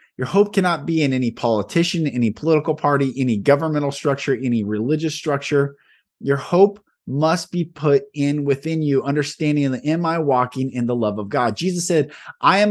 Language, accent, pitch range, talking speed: English, American, 125-165 Hz, 180 wpm